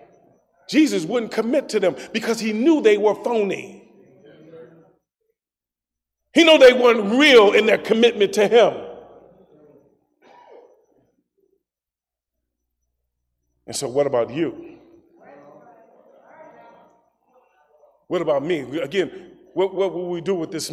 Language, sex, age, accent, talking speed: English, male, 40-59, American, 105 wpm